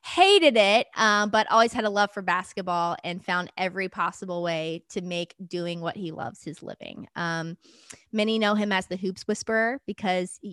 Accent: American